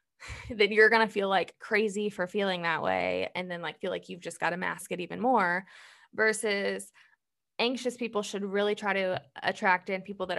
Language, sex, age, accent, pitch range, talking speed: English, female, 20-39, American, 185-230 Hz, 200 wpm